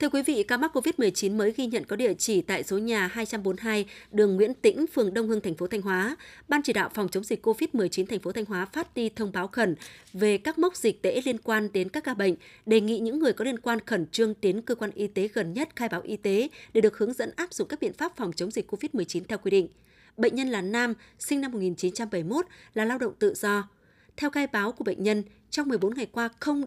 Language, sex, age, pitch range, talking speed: Vietnamese, female, 20-39, 195-240 Hz, 255 wpm